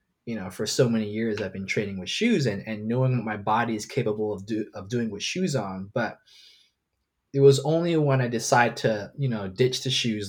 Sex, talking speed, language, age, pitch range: male, 225 wpm, English, 20-39, 105-130 Hz